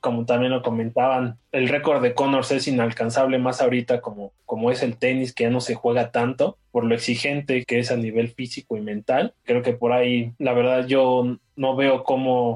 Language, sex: Spanish, male